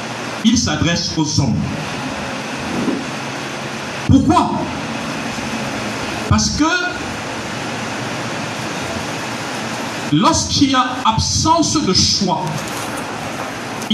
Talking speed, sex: 60 wpm, male